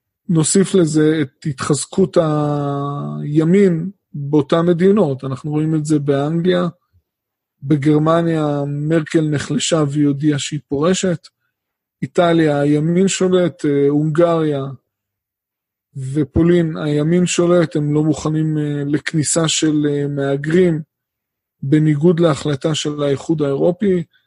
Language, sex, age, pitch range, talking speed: Hebrew, male, 20-39, 145-170 Hz, 90 wpm